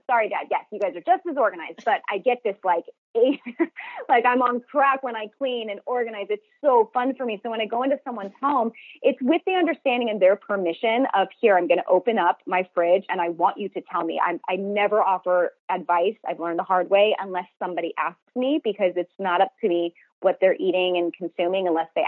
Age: 20-39